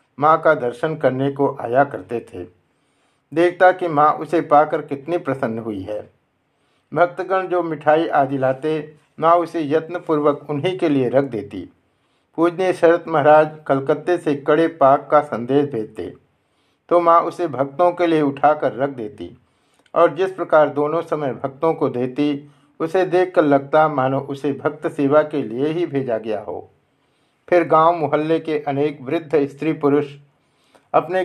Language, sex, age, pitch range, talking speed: Hindi, male, 60-79, 135-165 Hz, 150 wpm